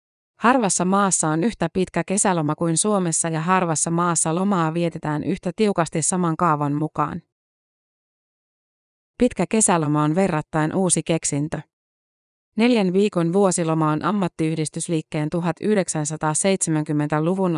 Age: 30-49